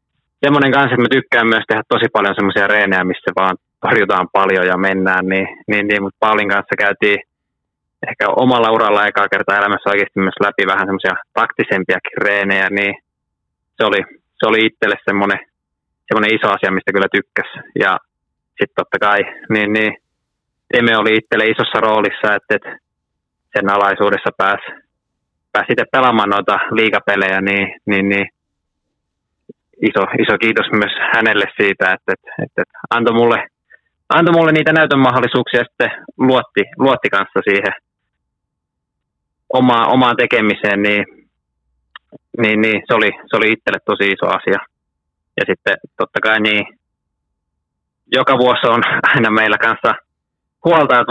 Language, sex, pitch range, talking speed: Finnish, male, 100-120 Hz, 140 wpm